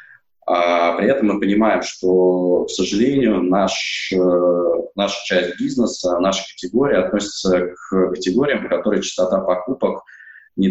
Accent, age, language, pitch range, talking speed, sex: native, 20-39, Russian, 90-100 Hz, 110 wpm, male